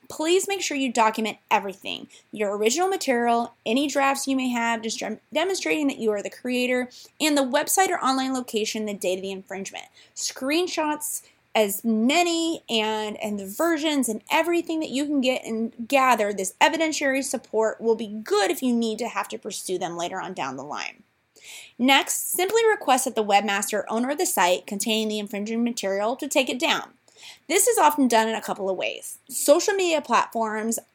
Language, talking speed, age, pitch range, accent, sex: English, 190 wpm, 20-39, 205-290 Hz, American, female